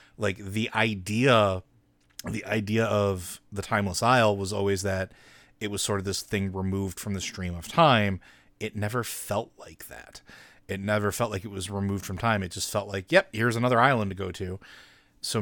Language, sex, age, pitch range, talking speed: English, male, 30-49, 95-115 Hz, 195 wpm